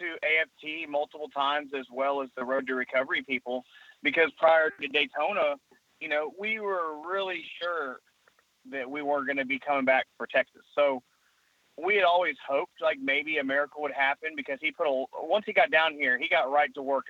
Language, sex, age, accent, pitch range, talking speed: English, male, 30-49, American, 140-165 Hz, 200 wpm